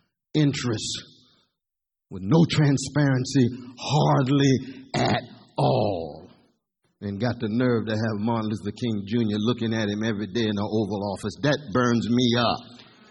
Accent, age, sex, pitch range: American, 50-69, male, 120-200 Hz